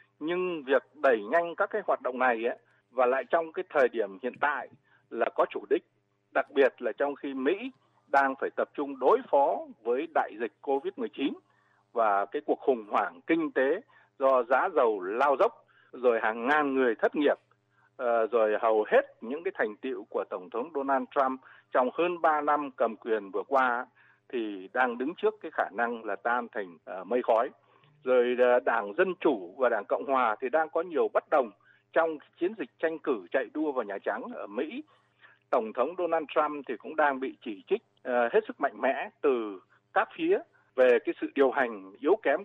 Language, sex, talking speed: Vietnamese, male, 195 wpm